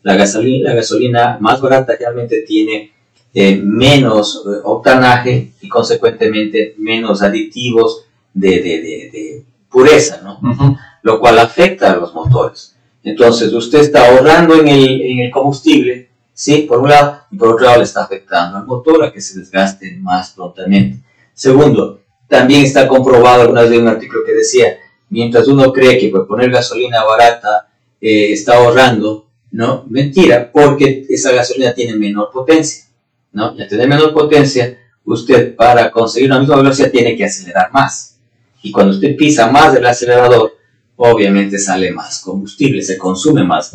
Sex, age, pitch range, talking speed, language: male, 40-59, 110-140 Hz, 150 wpm, Spanish